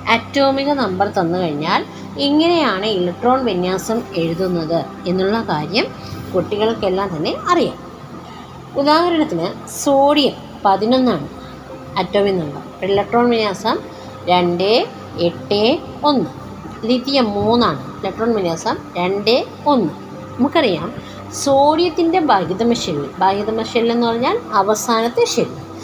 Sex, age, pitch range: female, 20-39, 185-260 Hz